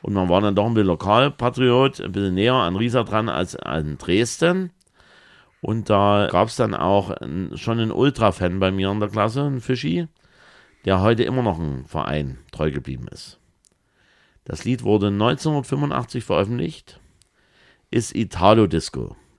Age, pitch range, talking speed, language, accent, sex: 50-69, 80-115 Hz, 150 wpm, German, German, male